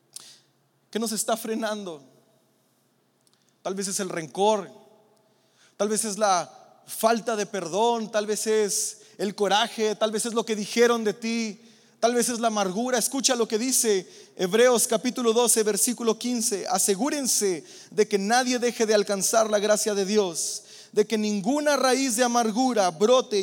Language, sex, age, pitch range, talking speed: Spanish, male, 30-49, 200-250 Hz, 155 wpm